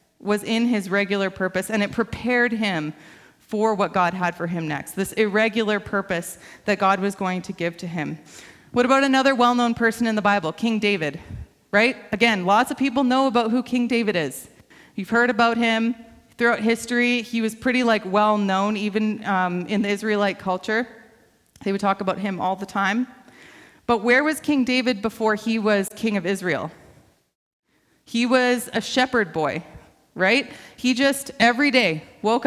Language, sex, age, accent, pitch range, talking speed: English, female, 30-49, American, 195-240 Hz, 175 wpm